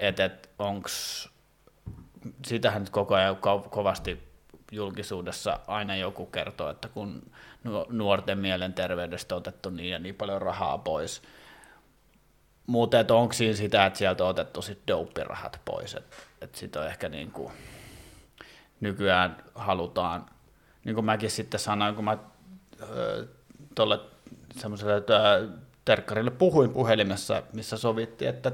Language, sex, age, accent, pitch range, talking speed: Finnish, male, 30-49, native, 95-115 Hz, 120 wpm